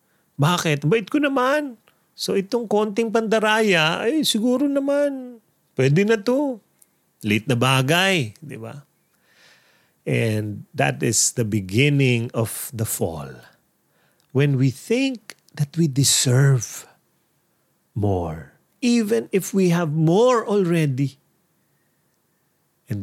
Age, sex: 40-59, male